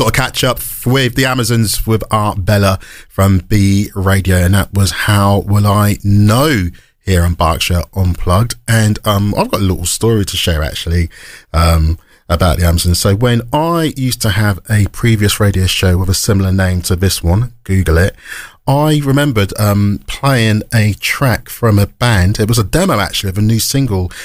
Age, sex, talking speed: 40-59, male, 190 wpm